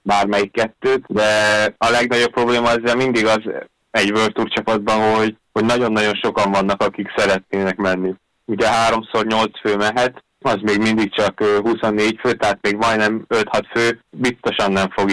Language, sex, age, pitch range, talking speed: Hungarian, male, 20-39, 100-110 Hz, 155 wpm